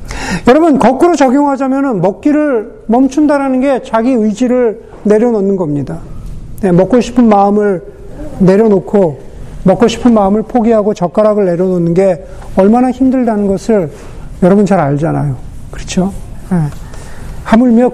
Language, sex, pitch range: Korean, male, 185-250 Hz